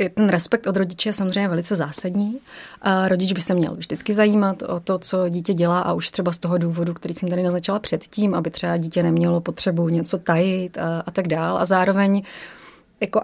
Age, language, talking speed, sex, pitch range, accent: 30-49, Czech, 205 wpm, female, 180-215 Hz, native